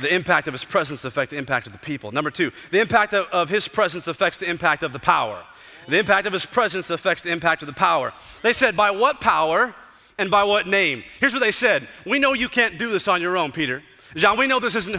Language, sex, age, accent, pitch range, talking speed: English, male, 30-49, American, 175-230 Hz, 255 wpm